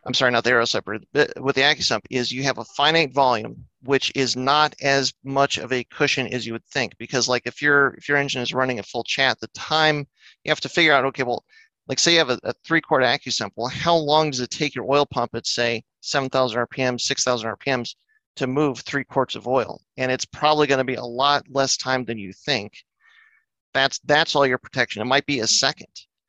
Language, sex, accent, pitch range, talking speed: English, male, American, 120-145 Hz, 230 wpm